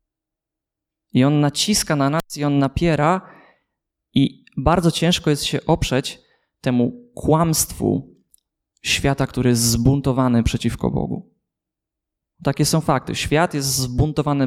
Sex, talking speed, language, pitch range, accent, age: male, 115 wpm, Polish, 125-160 Hz, native, 20-39